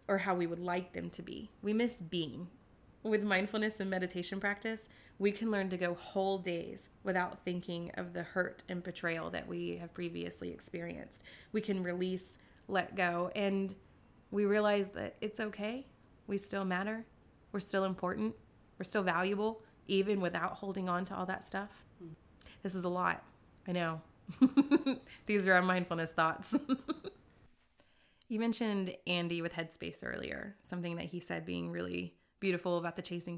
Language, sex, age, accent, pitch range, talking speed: English, female, 20-39, American, 175-205 Hz, 160 wpm